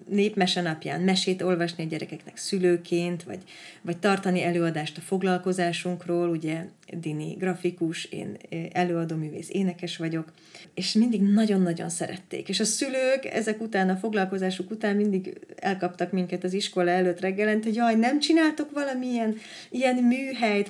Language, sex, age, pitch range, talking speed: Hungarian, female, 30-49, 175-220 Hz, 130 wpm